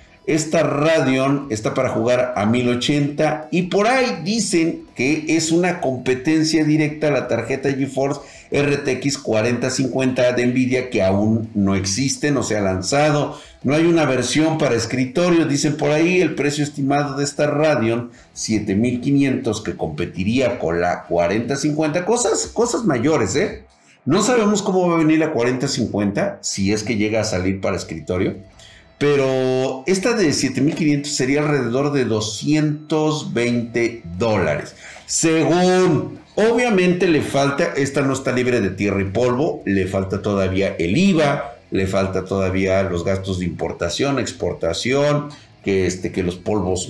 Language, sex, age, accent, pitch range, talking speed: Spanish, male, 50-69, Mexican, 105-150 Hz, 145 wpm